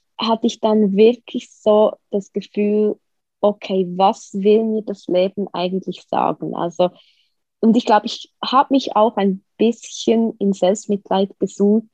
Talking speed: 140 wpm